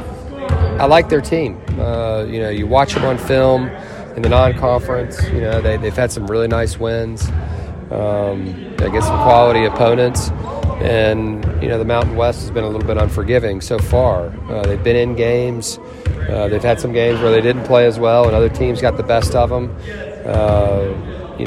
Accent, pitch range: American, 95-120 Hz